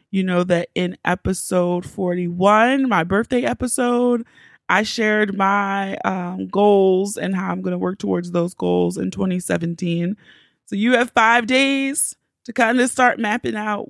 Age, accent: 20-39, American